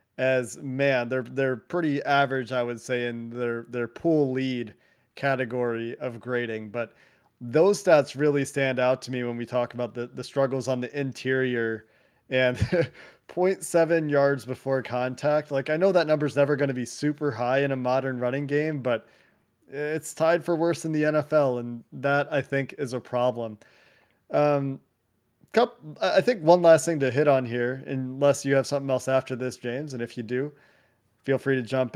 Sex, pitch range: male, 125-145 Hz